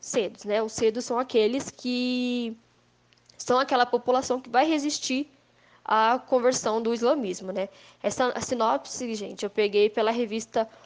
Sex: female